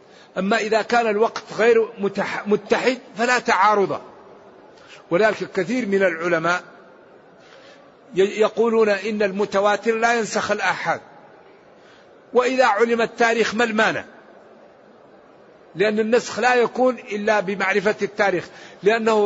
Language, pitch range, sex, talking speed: Arabic, 195-230 Hz, male, 105 wpm